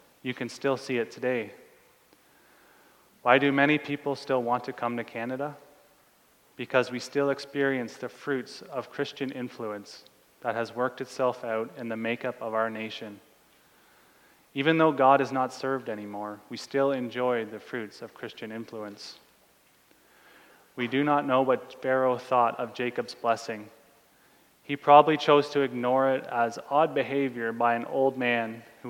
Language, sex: English, male